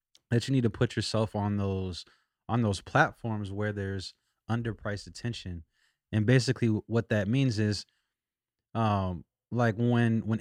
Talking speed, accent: 145 wpm, American